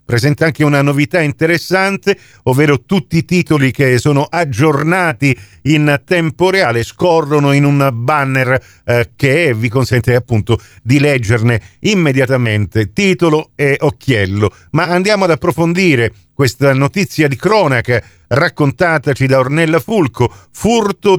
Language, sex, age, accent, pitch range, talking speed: Italian, male, 50-69, native, 130-180 Hz, 120 wpm